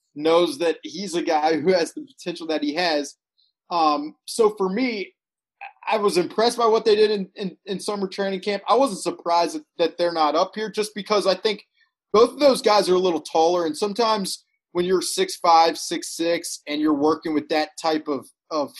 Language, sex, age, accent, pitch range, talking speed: English, male, 30-49, American, 155-215 Hz, 210 wpm